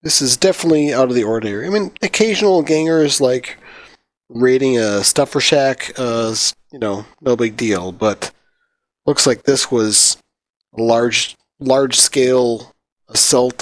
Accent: American